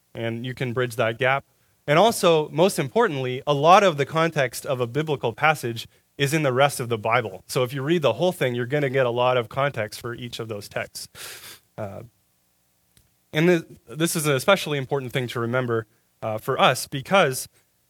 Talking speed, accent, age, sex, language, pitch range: 200 wpm, American, 30-49, male, English, 120-150 Hz